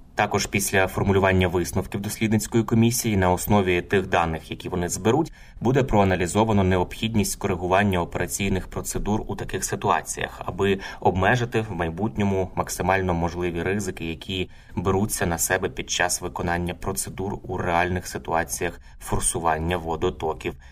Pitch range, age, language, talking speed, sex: 90-105 Hz, 20-39, Ukrainian, 120 wpm, male